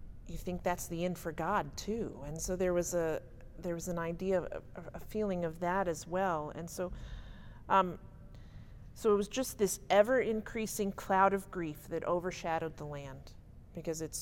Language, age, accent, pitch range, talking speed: English, 40-59, American, 150-210 Hz, 180 wpm